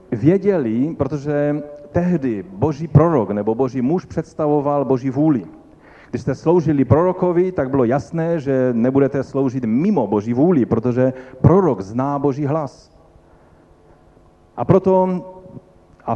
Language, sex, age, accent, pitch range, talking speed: Czech, male, 40-59, native, 125-165 Hz, 120 wpm